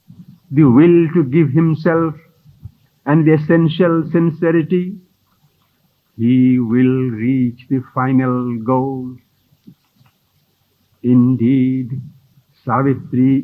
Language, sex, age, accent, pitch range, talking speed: English, male, 60-79, Indian, 125-155 Hz, 75 wpm